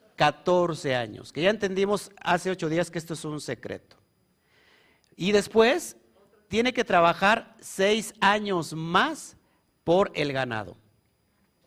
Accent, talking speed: Mexican, 125 wpm